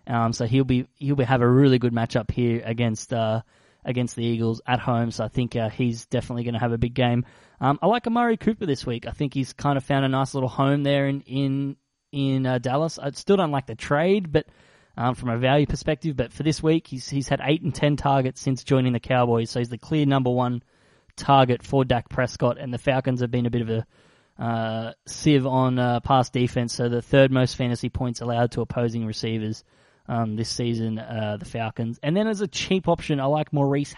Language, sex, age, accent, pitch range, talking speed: English, male, 20-39, Australian, 115-140 Hz, 230 wpm